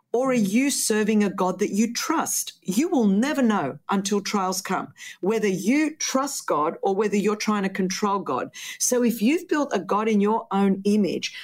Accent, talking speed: Australian, 195 wpm